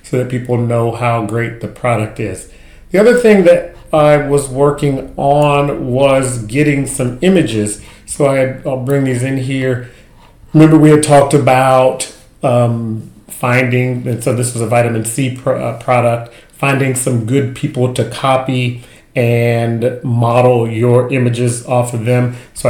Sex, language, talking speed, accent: male, English, 150 wpm, American